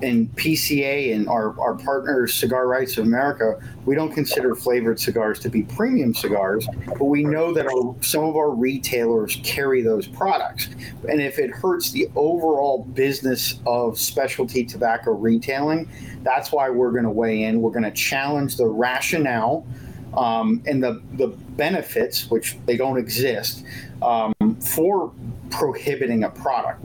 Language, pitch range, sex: English, 120-145 Hz, male